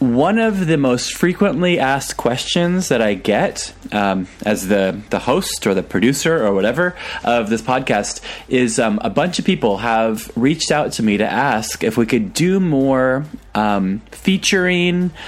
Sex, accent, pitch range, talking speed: male, American, 105-140 Hz, 170 wpm